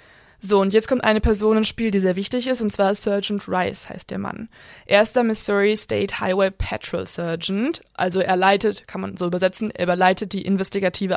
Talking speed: 205 wpm